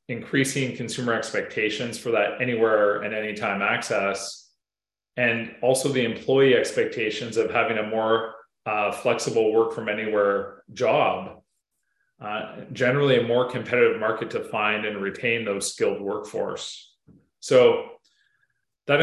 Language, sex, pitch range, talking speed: English, male, 115-175 Hz, 125 wpm